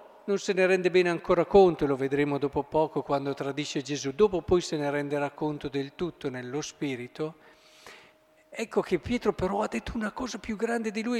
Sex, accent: male, native